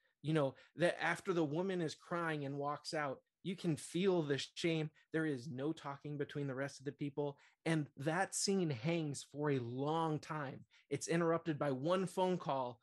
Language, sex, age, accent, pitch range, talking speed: English, male, 20-39, American, 140-165 Hz, 185 wpm